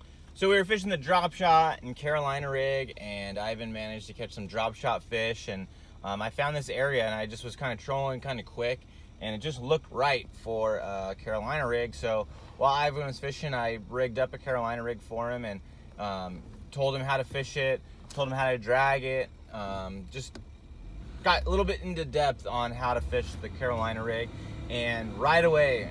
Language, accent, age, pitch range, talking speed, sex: English, American, 30-49, 100-130 Hz, 205 wpm, male